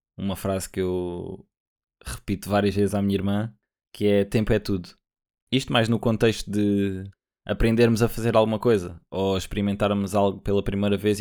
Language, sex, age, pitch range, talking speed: Portuguese, male, 20-39, 100-120 Hz, 165 wpm